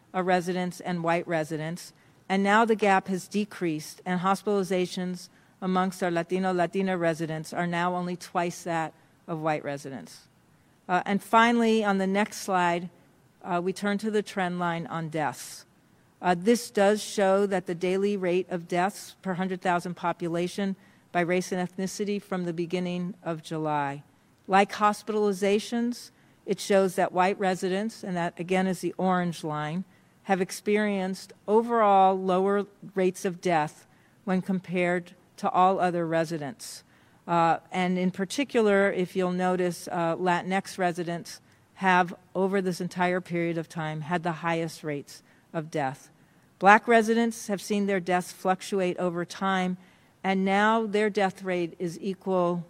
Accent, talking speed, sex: American, 145 wpm, female